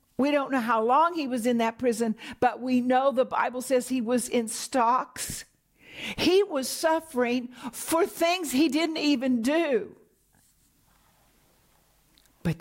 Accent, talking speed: American, 145 wpm